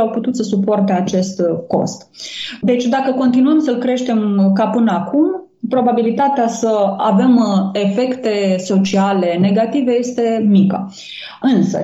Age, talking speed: 20-39, 115 wpm